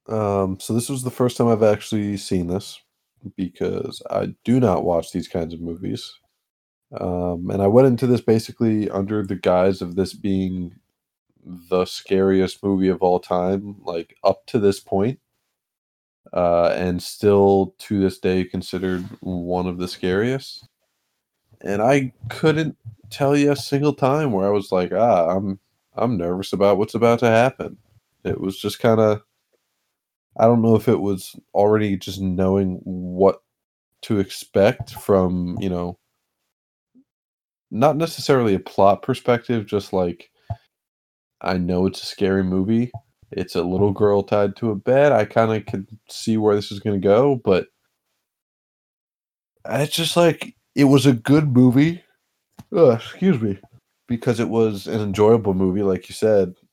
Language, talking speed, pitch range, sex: English, 155 wpm, 95-120 Hz, male